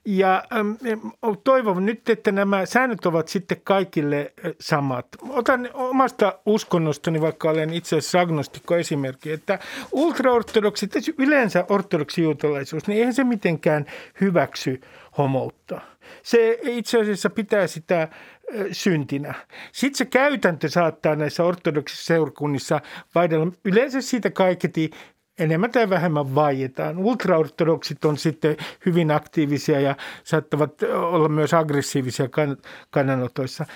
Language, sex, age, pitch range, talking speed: Finnish, male, 50-69, 150-210 Hz, 105 wpm